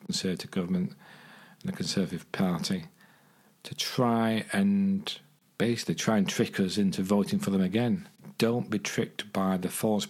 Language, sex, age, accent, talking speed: English, male, 40-59, British, 150 wpm